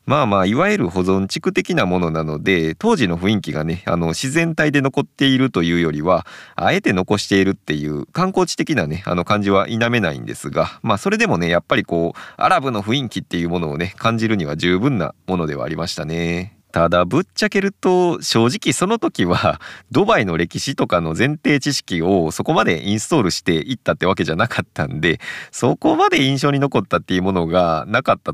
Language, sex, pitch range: Japanese, male, 85-115 Hz